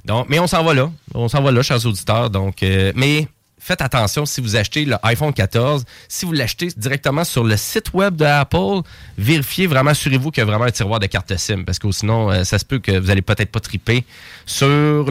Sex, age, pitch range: male, 20-39, 105-135 Hz